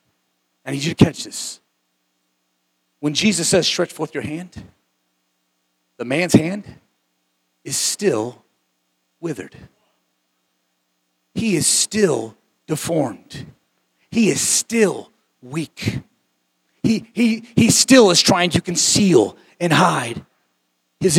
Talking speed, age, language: 110 wpm, 40-59, English